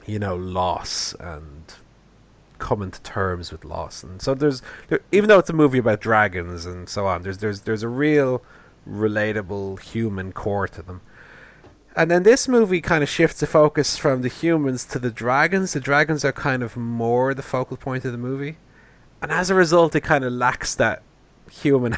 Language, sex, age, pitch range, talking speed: English, male, 30-49, 95-130 Hz, 190 wpm